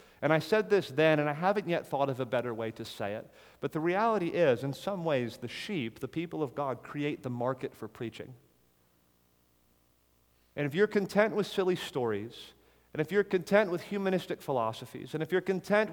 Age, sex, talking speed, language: 40-59, male, 200 wpm, English